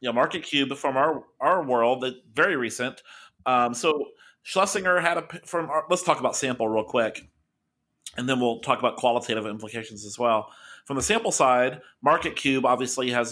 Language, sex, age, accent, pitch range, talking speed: English, male, 30-49, American, 115-140 Hz, 175 wpm